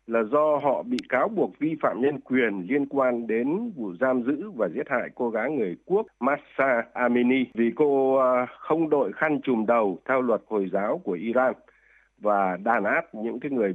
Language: Vietnamese